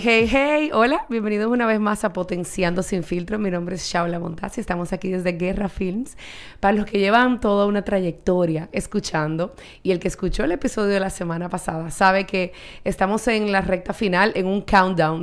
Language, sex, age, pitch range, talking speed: Spanish, female, 30-49, 180-215 Hz, 195 wpm